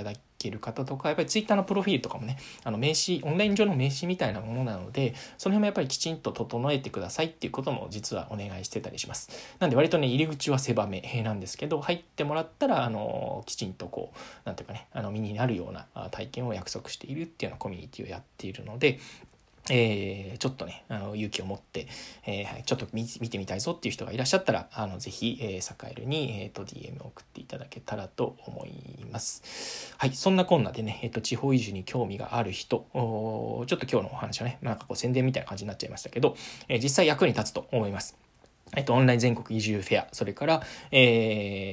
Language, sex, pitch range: Japanese, male, 105-140 Hz